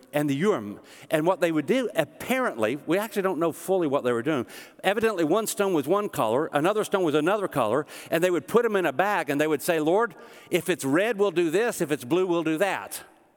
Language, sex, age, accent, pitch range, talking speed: English, male, 60-79, American, 140-190 Hz, 240 wpm